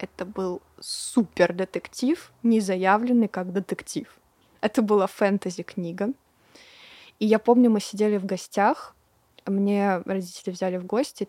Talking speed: 120 wpm